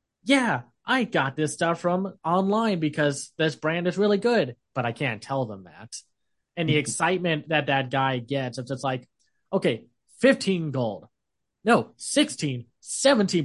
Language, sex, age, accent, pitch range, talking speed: English, male, 20-39, American, 125-170 Hz, 155 wpm